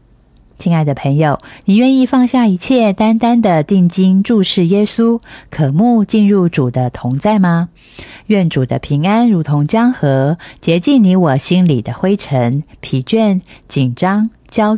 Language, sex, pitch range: Chinese, female, 140-215 Hz